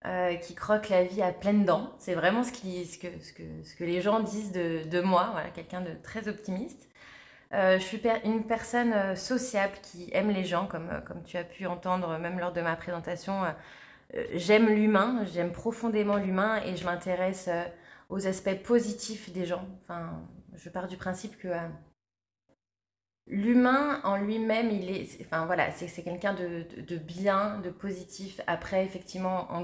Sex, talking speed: female, 190 wpm